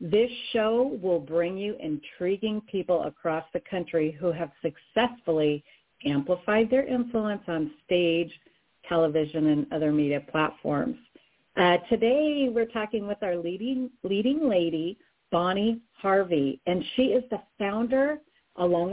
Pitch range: 165-225 Hz